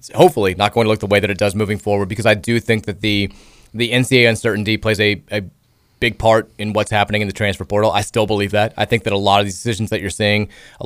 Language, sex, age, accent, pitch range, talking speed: English, male, 20-39, American, 105-120 Hz, 270 wpm